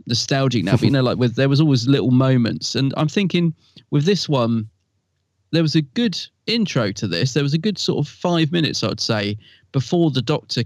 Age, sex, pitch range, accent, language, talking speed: 30-49, male, 120-165 Hz, British, English, 215 wpm